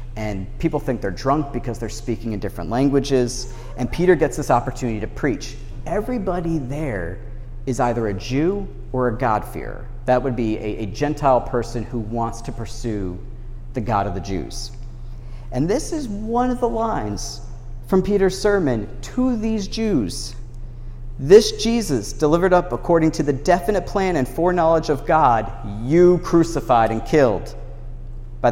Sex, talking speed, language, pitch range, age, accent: male, 155 wpm, English, 120-140 Hz, 40-59, American